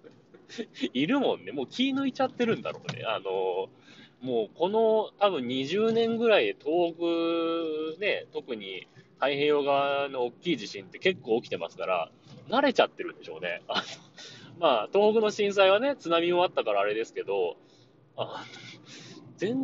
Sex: male